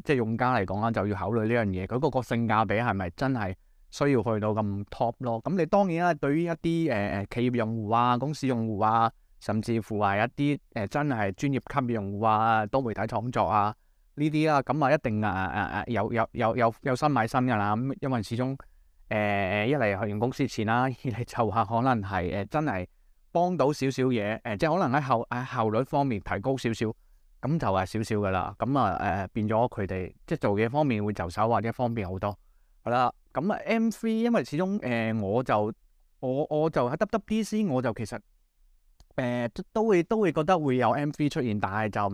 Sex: male